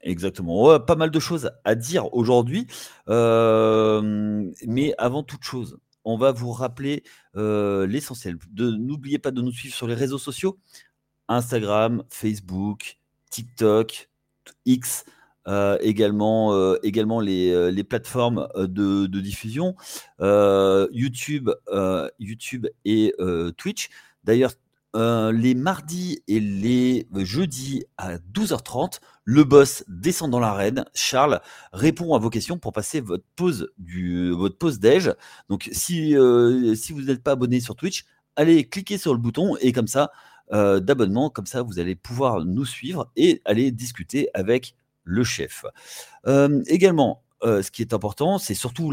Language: French